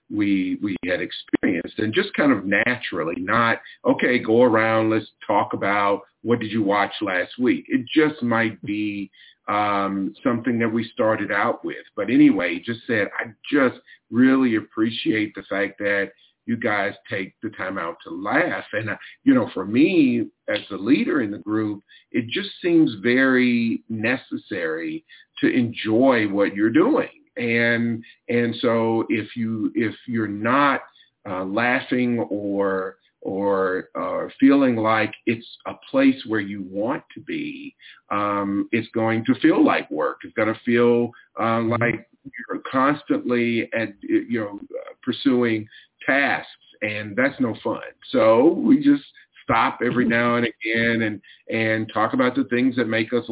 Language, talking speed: English, 155 wpm